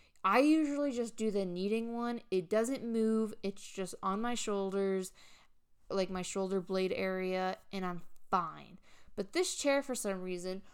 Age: 20-39